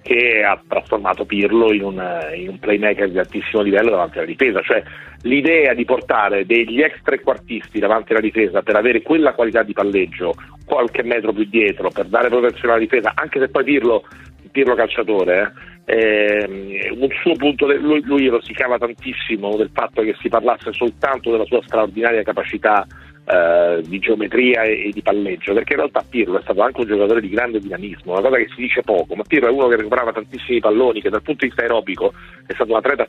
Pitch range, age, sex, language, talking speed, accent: 105-140 Hz, 40-59, male, Italian, 190 wpm, native